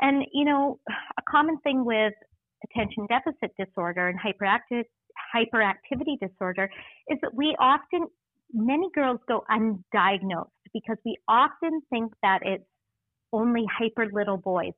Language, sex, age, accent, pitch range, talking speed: English, female, 40-59, American, 195-260 Hz, 125 wpm